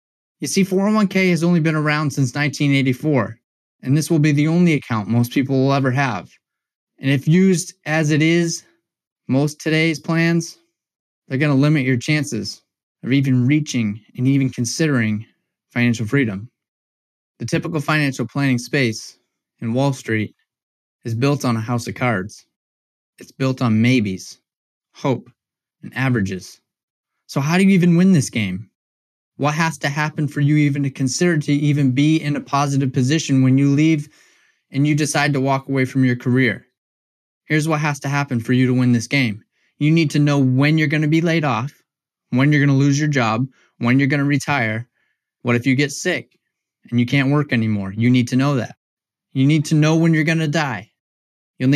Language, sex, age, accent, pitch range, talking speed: English, male, 20-39, American, 120-150 Hz, 185 wpm